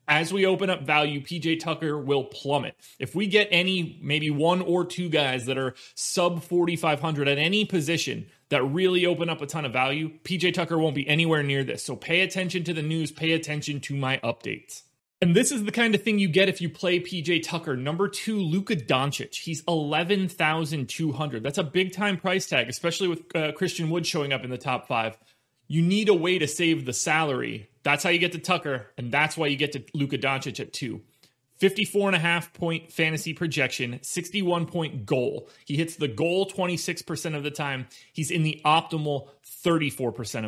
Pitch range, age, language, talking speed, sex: 140-175 Hz, 30-49, English, 190 wpm, male